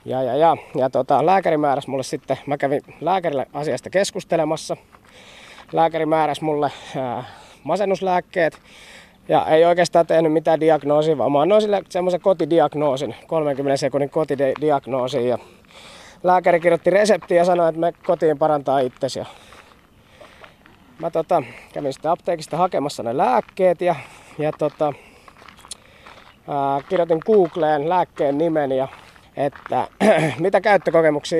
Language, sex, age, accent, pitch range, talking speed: Finnish, male, 20-39, native, 145-175 Hz, 120 wpm